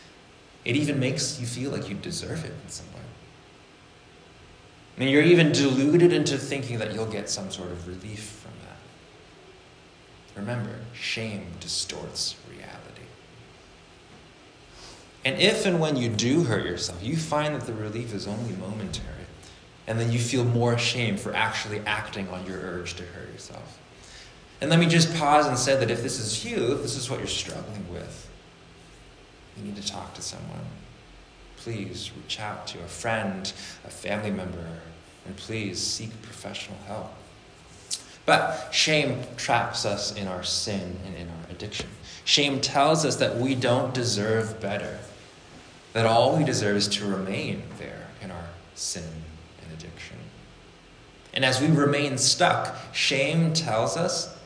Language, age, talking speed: English, 20-39, 155 wpm